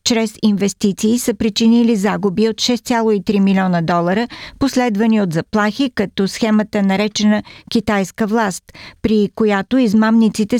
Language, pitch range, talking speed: Bulgarian, 200-235 Hz, 115 wpm